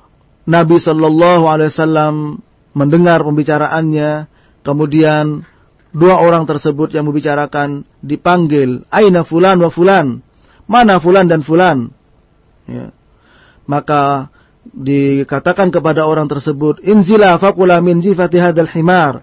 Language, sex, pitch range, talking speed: English, male, 150-175 Hz, 95 wpm